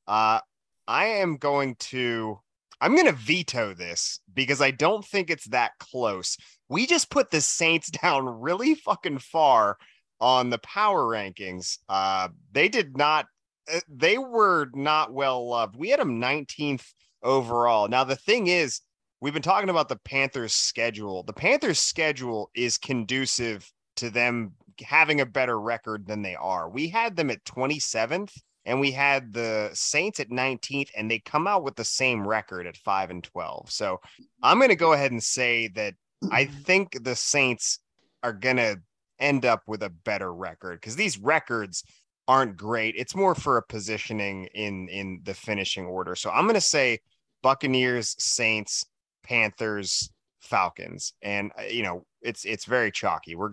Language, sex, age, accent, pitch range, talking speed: English, male, 30-49, American, 110-145 Hz, 165 wpm